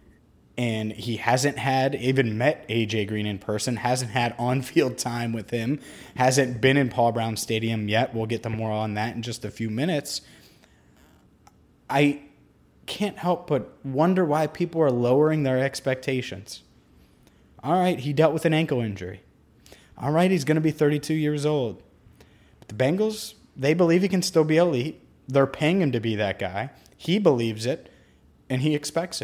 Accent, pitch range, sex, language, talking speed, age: American, 110-150 Hz, male, English, 170 wpm, 20-39